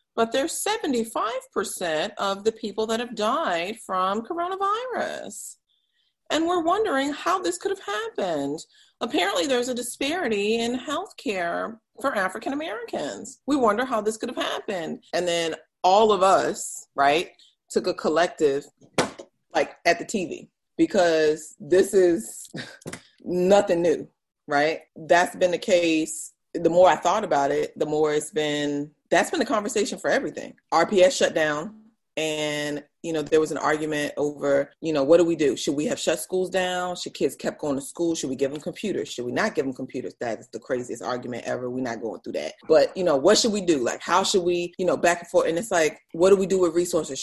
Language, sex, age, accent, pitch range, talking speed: English, female, 30-49, American, 160-240 Hz, 190 wpm